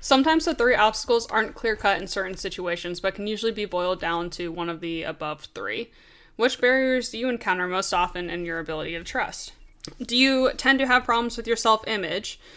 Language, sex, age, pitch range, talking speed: English, female, 10-29, 190-250 Hz, 200 wpm